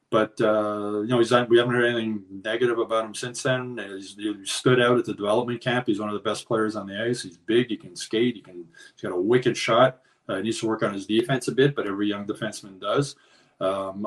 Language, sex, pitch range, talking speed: English, male, 105-125 Hz, 250 wpm